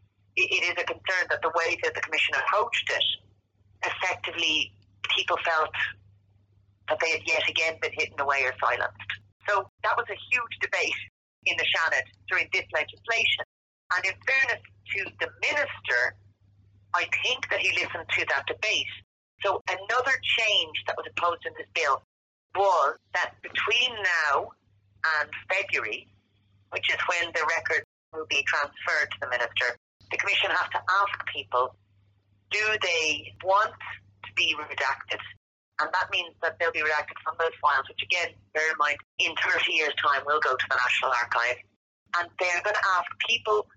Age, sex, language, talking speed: 40-59, female, English, 165 wpm